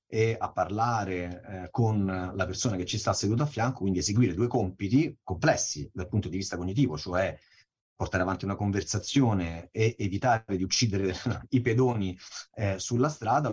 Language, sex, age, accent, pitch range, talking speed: Italian, male, 30-49, native, 95-120 Hz, 165 wpm